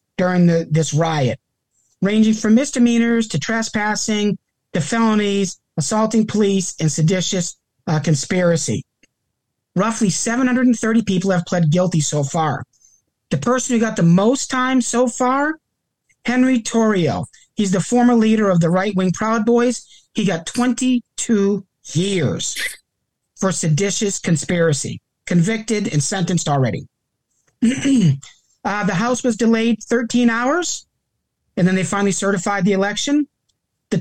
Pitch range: 170-230 Hz